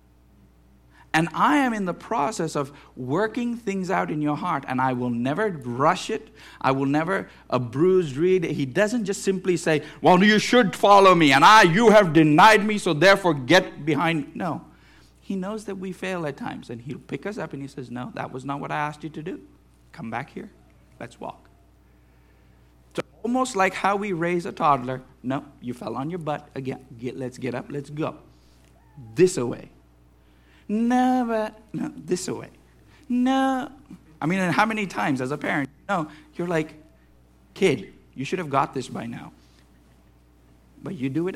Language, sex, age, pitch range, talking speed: English, male, 50-69, 115-185 Hz, 190 wpm